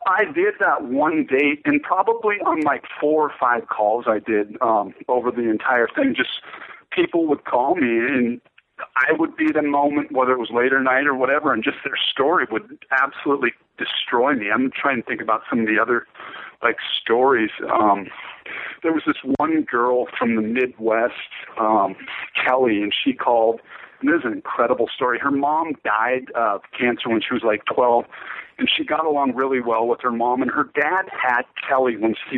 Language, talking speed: English, 195 wpm